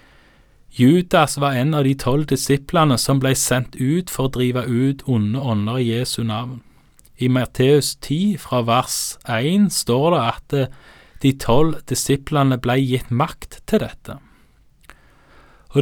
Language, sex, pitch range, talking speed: Danish, male, 125-155 Hz, 140 wpm